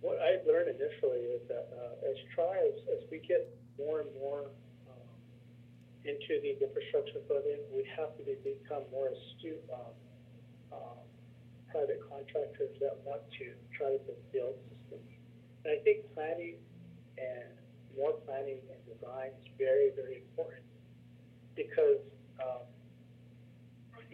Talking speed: 130 wpm